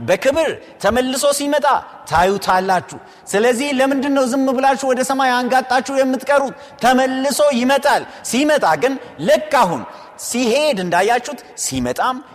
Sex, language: male, Amharic